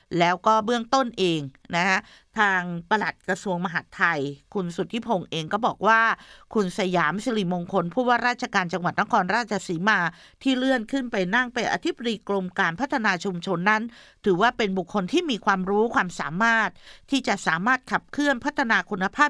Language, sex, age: Thai, female, 50-69